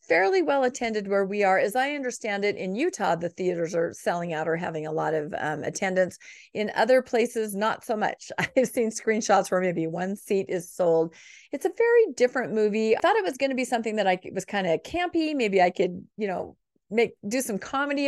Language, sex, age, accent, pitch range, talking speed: English, female, 40-59, American, 185-260 Hz, 225 wpm